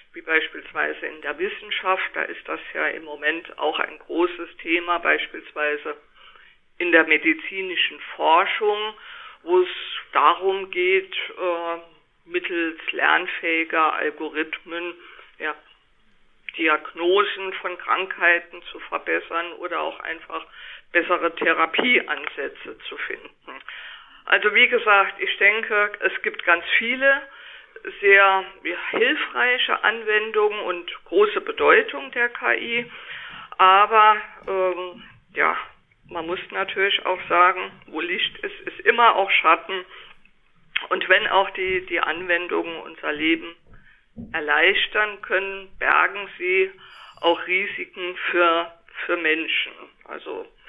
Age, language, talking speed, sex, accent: 50-69, German, 110 wpm, female, German